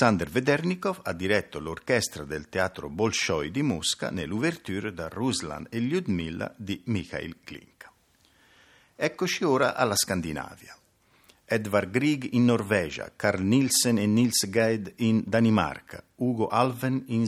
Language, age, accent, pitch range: Italian, 50-69, native, 95-135 Hz